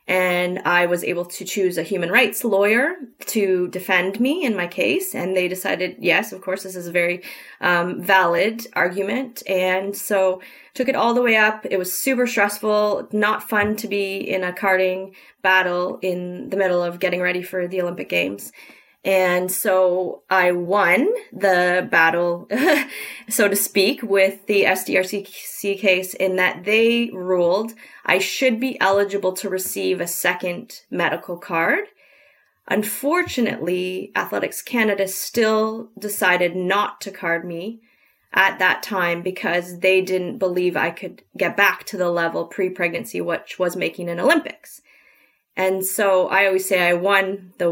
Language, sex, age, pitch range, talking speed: English, female, 20-39, 180-210 Hz, 155 wpm